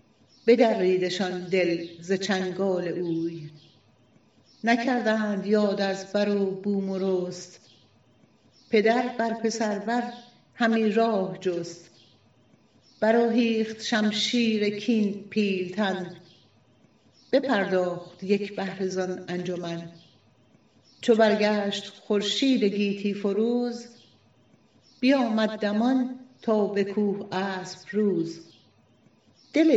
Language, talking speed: Persian, 80 wpm